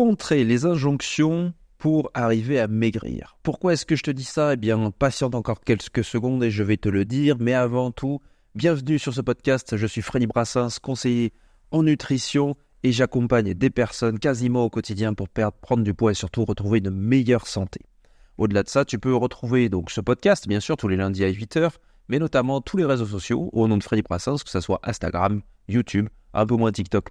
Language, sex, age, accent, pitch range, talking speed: French, male, 30-49, French, 110-145 Hz, 210 wpm